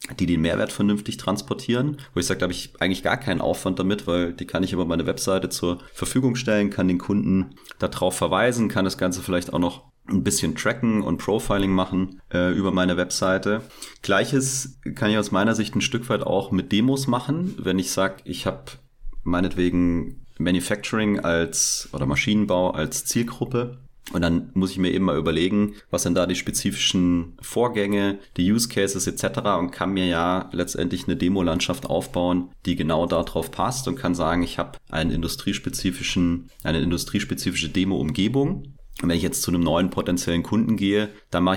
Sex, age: male, 30-49